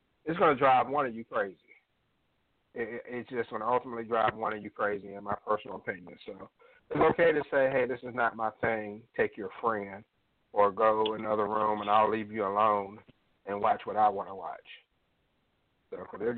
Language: English